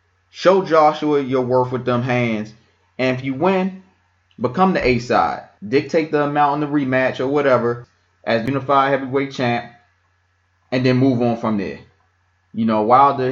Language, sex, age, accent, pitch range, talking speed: English, male, 20-39, American, 115-150 Hz, 160 wpm